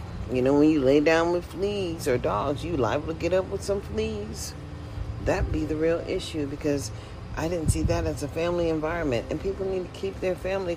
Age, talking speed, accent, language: 50-69, 215 wpm, American, English